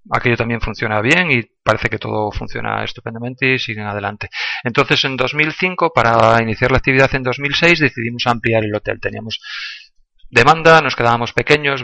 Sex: male